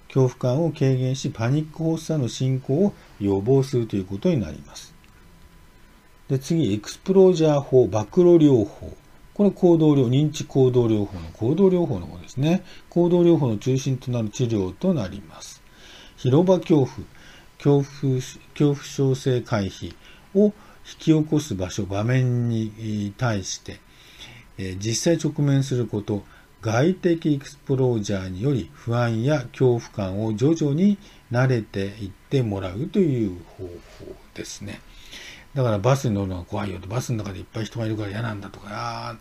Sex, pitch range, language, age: male, 105-150 Hz, Japanese, 50-69